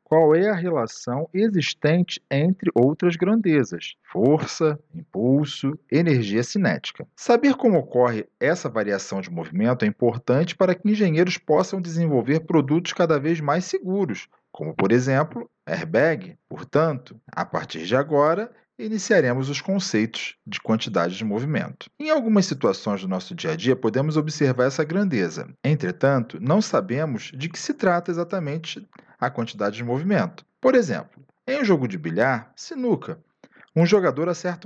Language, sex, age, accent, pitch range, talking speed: Portuguese, male, 40-59, Brazilian, 130-195 Hz, 140 wpm